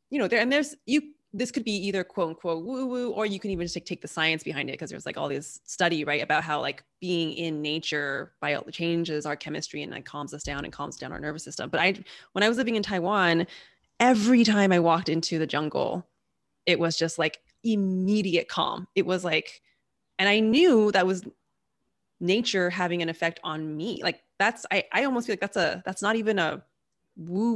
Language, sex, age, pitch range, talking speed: English, female, 20-39, 160-210 Hz, 225 wpm